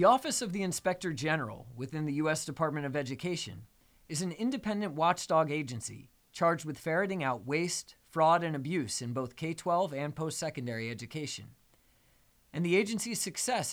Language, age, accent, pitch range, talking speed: English, 30-49, American, 130-185 Hz, 155 wpm